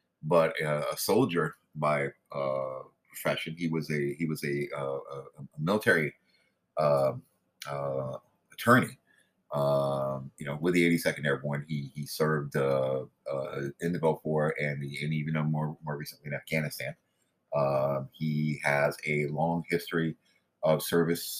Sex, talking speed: male, 145 wpm